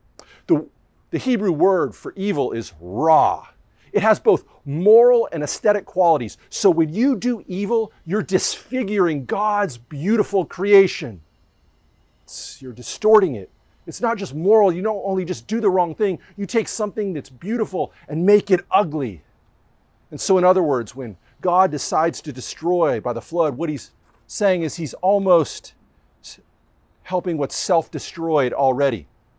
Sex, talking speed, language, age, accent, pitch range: male, 145 wpm, English, 40-59, American, 150-200 Hz